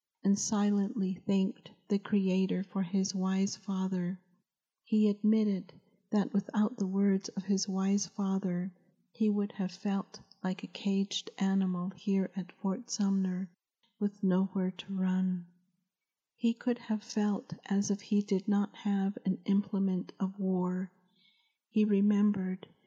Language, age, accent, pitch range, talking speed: English, 50-69, American, 190-205 Hz, 135 wpm